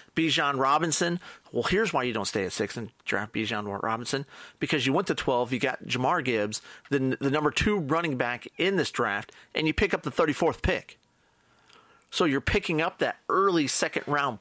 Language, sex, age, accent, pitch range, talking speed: English, male, 40-59, American, 115-155 Hz, 195 wpm